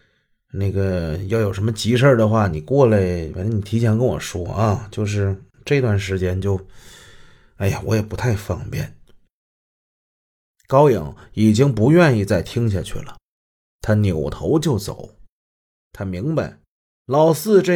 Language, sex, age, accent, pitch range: Chinese, male, 30-49, native, 100-145 Hz